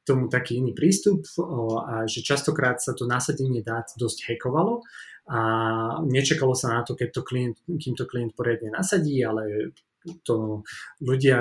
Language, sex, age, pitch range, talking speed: Slovak, male, 20-39, 115-135 Hz, 145 wpm